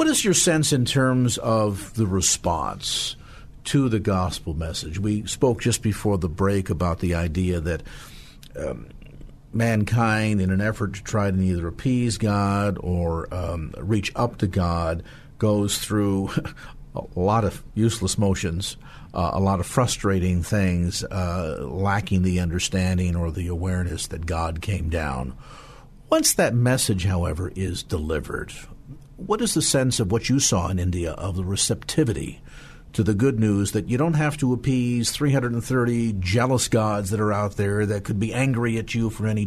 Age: 50-69